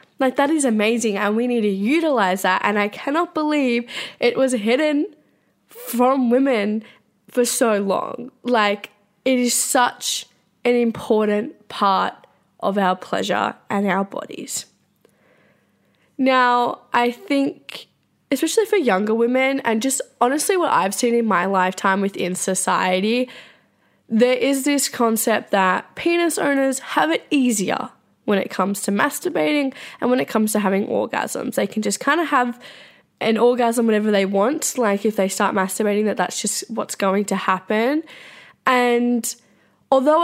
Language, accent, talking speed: English, Australian, 150 wpm